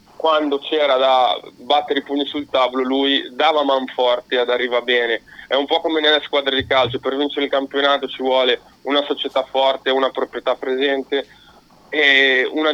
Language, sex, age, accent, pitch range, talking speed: Italian, male, 30-49, native, 130-150 Hz, 175 wpm